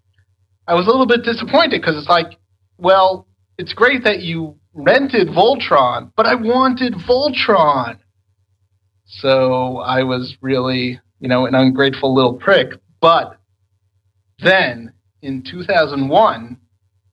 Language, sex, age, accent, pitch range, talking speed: English, male, 40-59, American, 100-155 Hz, 120 wpm